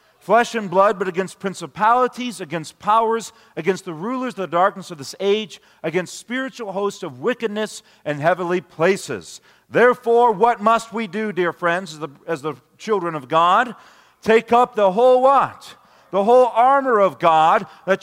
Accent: American